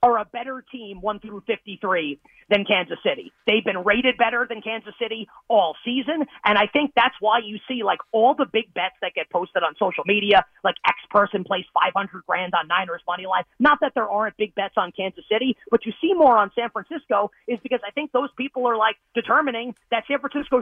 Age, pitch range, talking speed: 30-49, 200-250 Hz, 220 wpm